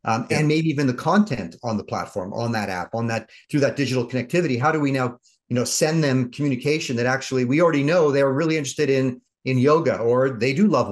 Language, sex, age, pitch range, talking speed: English, male, 40-59, 115-145 Hz, 230 wpm